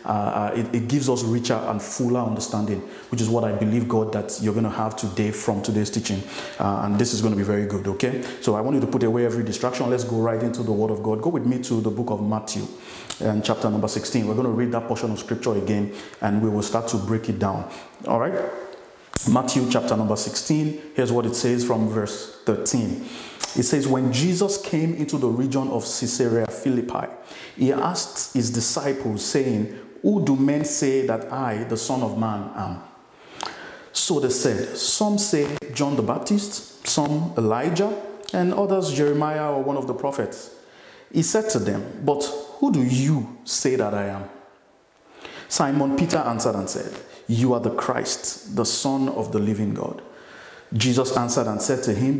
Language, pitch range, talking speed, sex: English, 110-140 Hz, 195 wpm, male